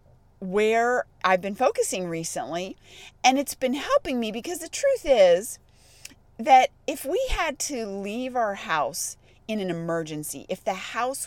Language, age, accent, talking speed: English, 30-49, American, 150 wpm